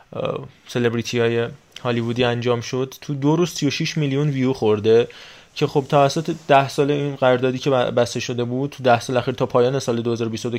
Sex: male